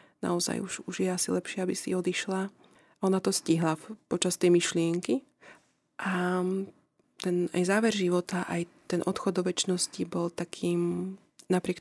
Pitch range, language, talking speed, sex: 175-195 Hz, Slovak, 135 wpm, female